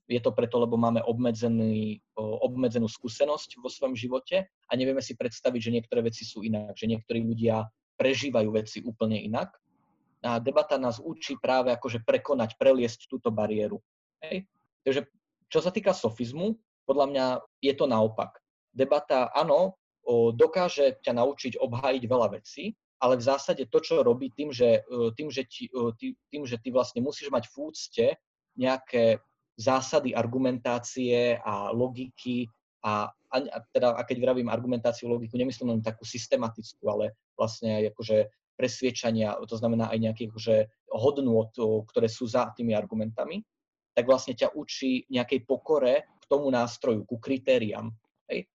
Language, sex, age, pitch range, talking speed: Slovak, male, 20-39, 115-140 Hz, 145 wpm